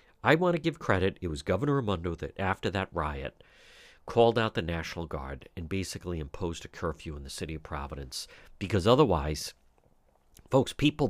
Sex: male